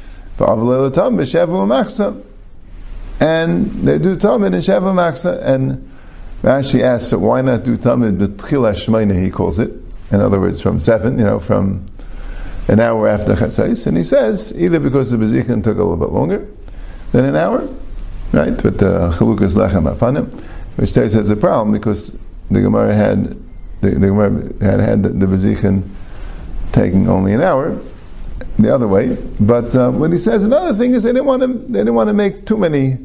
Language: English